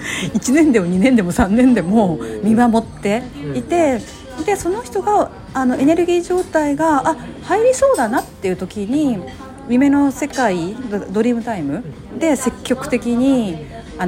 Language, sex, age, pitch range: Japanese, female, 40-59, 180-265 Hz